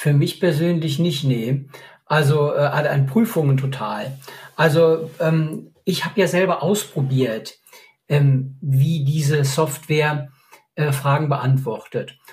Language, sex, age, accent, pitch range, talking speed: German, male, 50-69, German, 140-180 Hz, 115 wpm